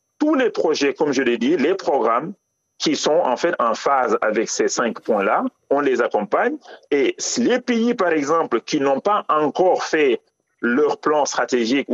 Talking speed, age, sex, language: 175 wpm, 40-59, male, French